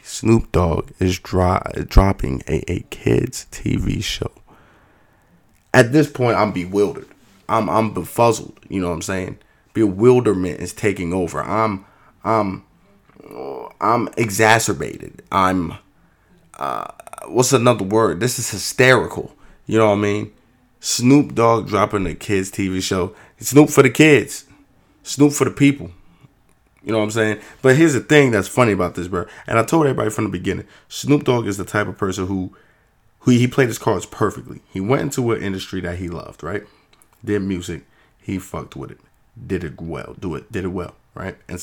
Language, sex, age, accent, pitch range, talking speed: English, male, 20-39, American, 95-120 Hz, 170 wpm